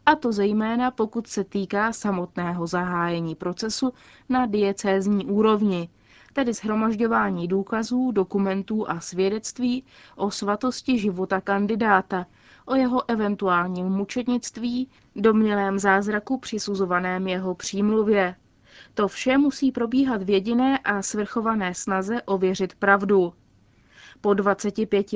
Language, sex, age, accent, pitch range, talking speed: Czech, female, 20-39, native, 190-235 Hz, 105 wpm